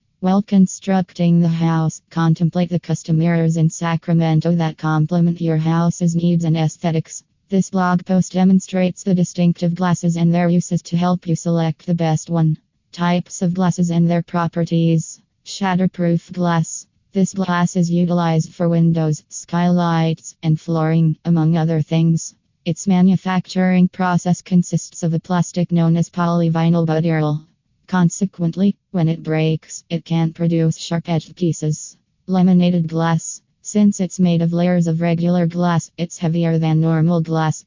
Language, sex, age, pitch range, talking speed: English, female, 20-39, 160-175 Hz, 145 wpm